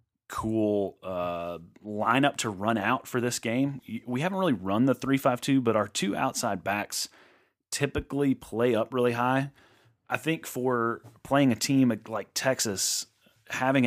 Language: English